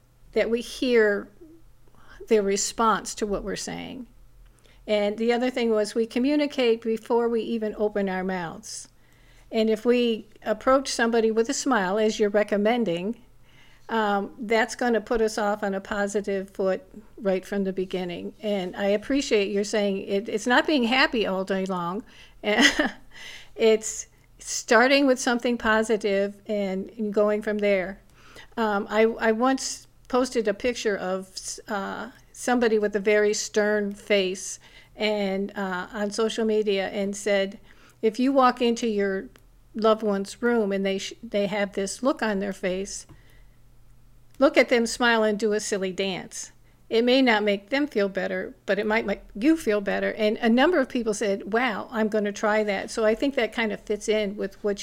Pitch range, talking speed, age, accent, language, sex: 200-230 Hz, 165 wpm, 50-69, American, English, female